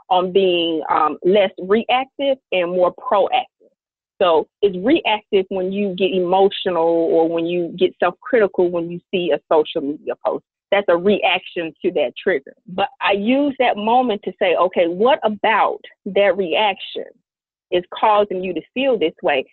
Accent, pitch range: American, 175-240 Hz